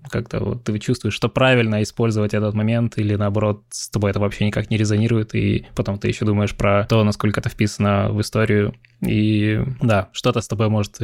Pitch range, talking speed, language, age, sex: 105-115 Hz, 195 wpm, Russian, 20-39, male